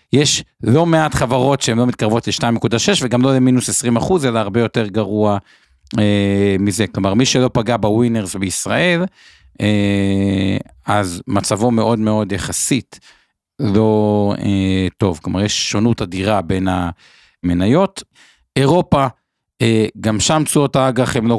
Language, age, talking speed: Hebrew, 50-69, 135 wpm